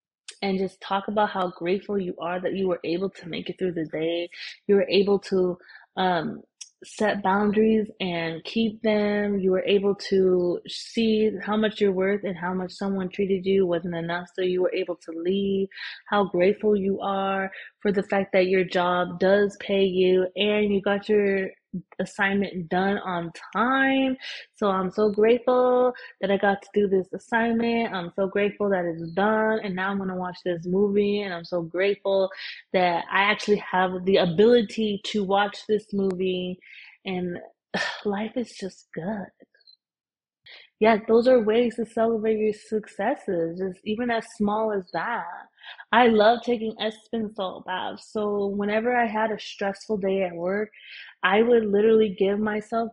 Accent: American